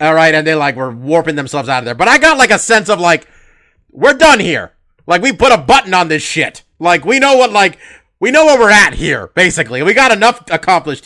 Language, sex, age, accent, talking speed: English, male, 40-59, American, 250 wpm